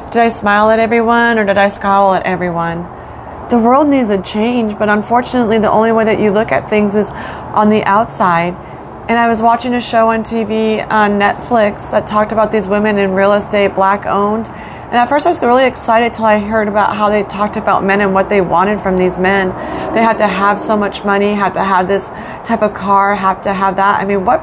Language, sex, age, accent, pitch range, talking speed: English, female, 30-49, American, 180-215 Hz, 230 wpm